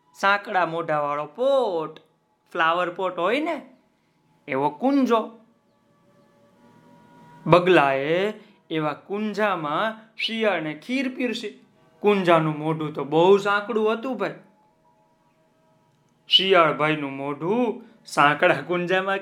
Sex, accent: male, native